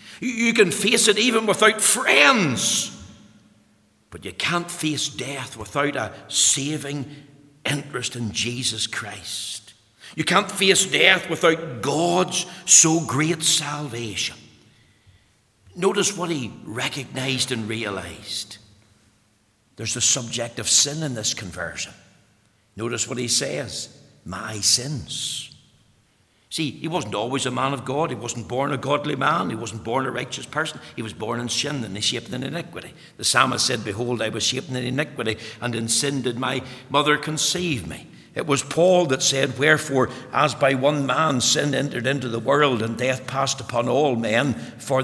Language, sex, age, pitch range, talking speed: English, male, 60-79, 115-155 Hz, 155 wpm